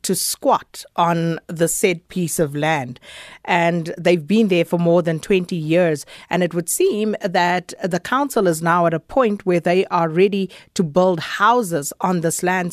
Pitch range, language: 165-200 Hz, English